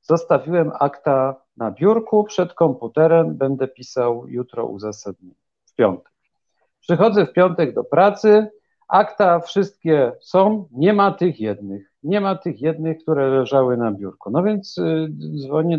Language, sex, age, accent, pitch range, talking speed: Polish, male, 50-69, native, 130-180 Hz, 135 wpm